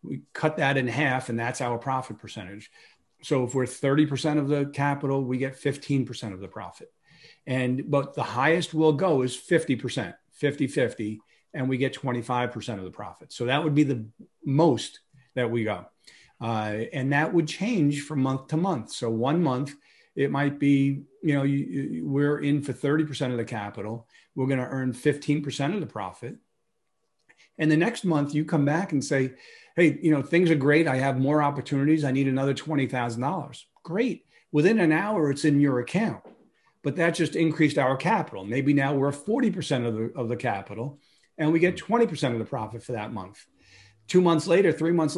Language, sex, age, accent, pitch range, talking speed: English, male, 40-59, American, 125-155 Hz, 190 wpm